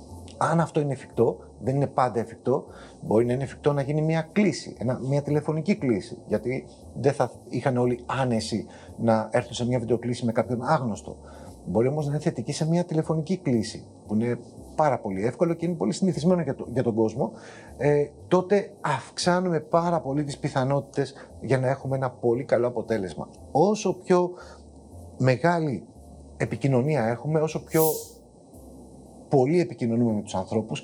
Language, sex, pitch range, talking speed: Greek, male, 120-160 Hz, 160 wpm